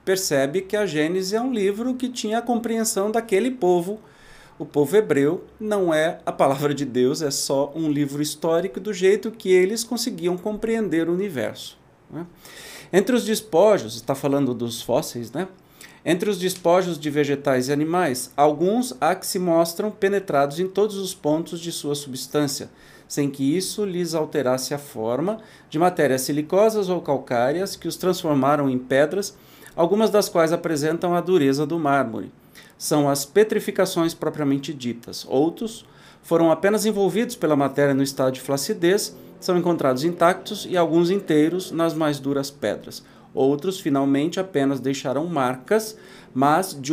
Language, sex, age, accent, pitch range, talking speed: Portuguese, male, 40-59, Brazilian, 145-190 Hz, 155 wpm